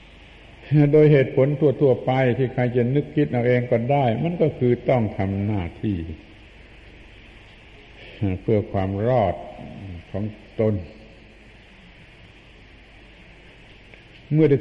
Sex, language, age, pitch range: male, Thai, 60-79, 100-120 Hz